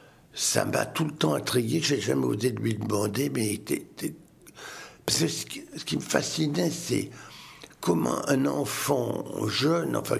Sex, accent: male, French